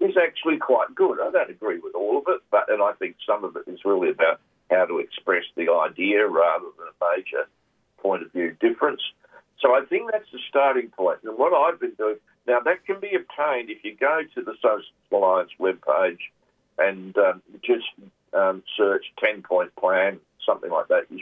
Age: 50-69